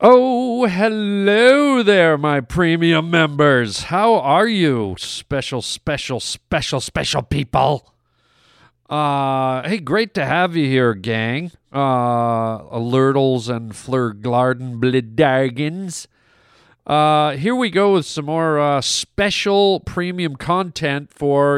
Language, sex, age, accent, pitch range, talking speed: English, male, 40-59, American, 125-160 Hz, 110 wpm